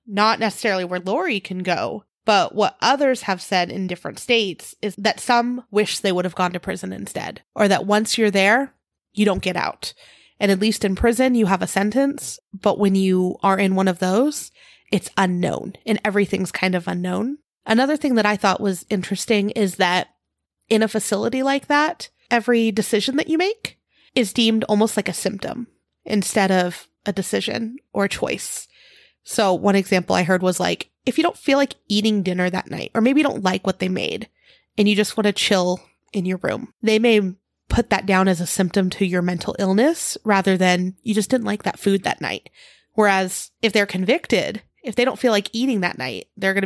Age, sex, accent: 30-49, female, American